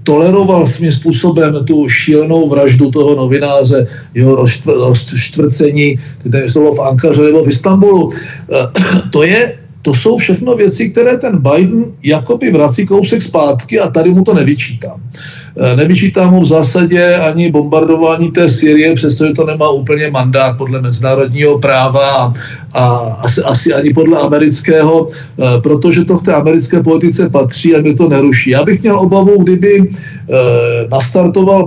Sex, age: male, 50-69